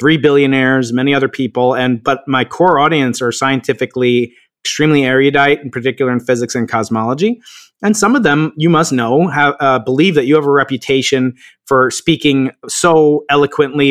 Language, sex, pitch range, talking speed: English, male, 135-185 Hz, 170 wpm